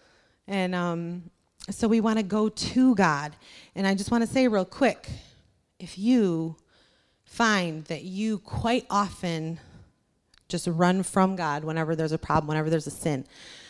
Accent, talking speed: American, 160 wpm